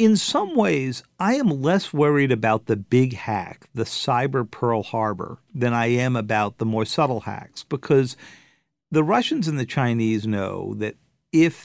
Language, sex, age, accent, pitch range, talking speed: English, male, 50-69, American, 110-150 Hz, 165 wpm